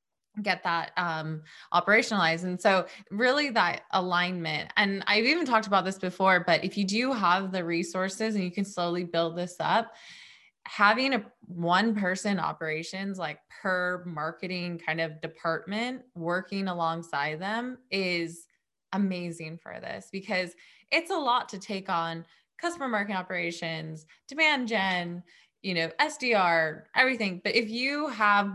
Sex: female